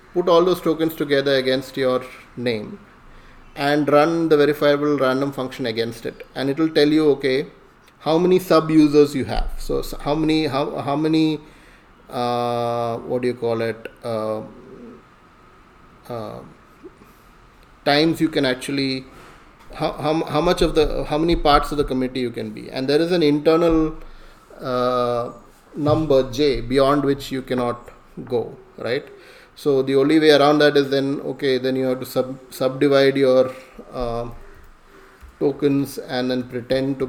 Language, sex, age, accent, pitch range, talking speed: English, male, 30-49, Indian, 120-145 Hz, 155 wpm